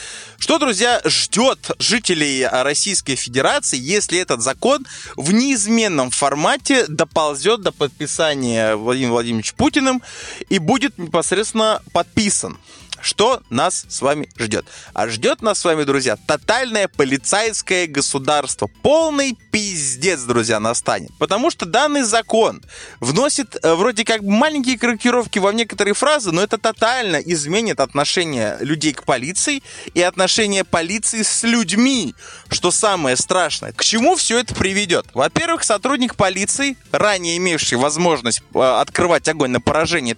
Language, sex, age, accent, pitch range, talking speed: Russian, male, 20-39, native, 135-225 Hz, 125 wpm